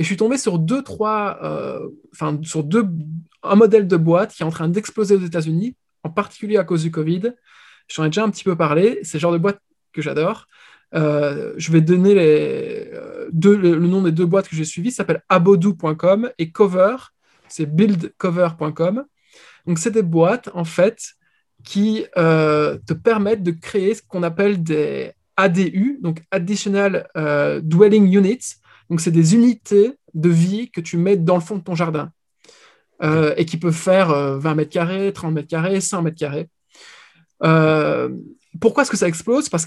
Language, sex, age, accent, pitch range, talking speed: French, male, 20-39, French, 160-205 Hz, 190 wpm